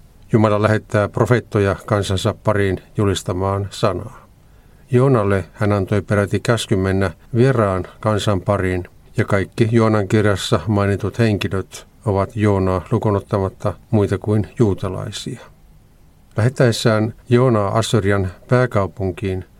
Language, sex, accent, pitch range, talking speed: Finnish, male, native, 100-115 Hz, 95 wpm